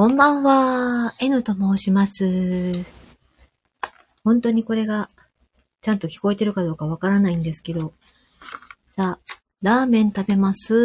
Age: 40-59